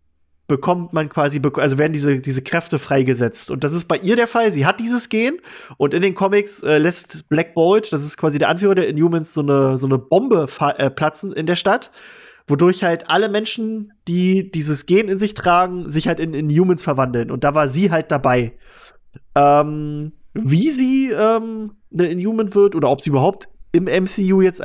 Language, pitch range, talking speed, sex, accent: German, 145-190 Hz, 195 wpm, male, German